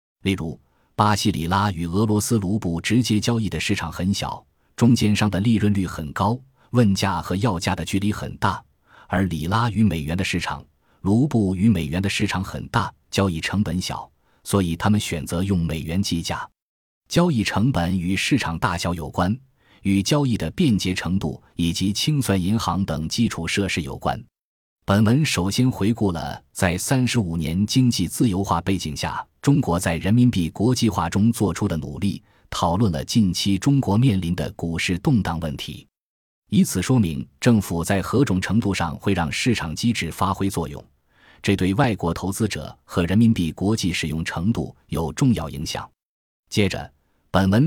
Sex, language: male, Chinese